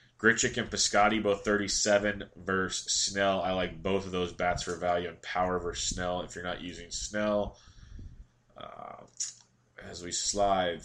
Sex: male